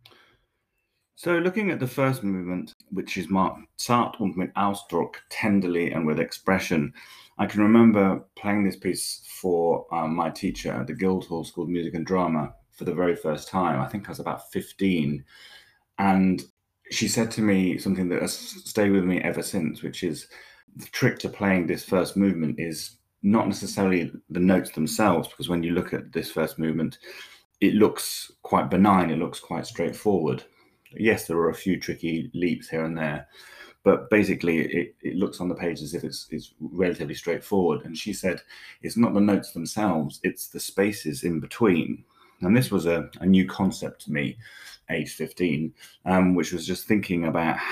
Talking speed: 180 wpm